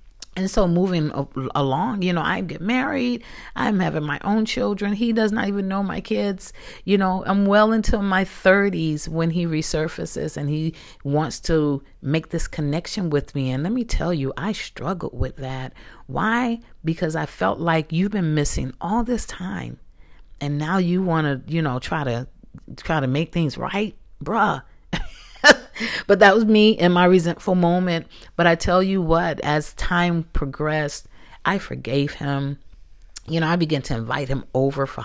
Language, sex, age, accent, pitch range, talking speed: English, female, 40-59, American, 140-185 Hz, 175 wpm